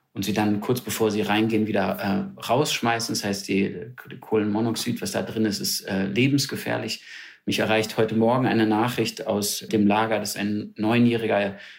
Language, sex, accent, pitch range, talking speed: English, male, German, 105-120 Hz, 175 wpm